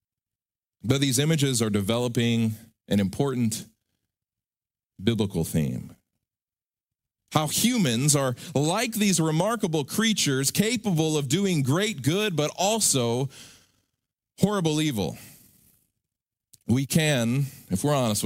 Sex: male